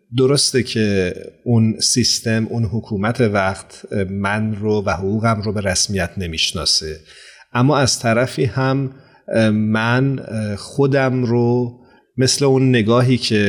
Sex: male